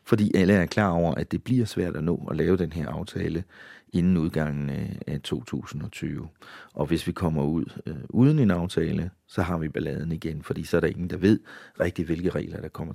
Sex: male